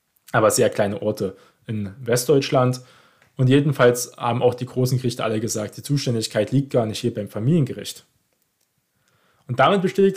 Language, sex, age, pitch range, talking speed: German, male, 20-39, 115-145 Hz, 155 wpm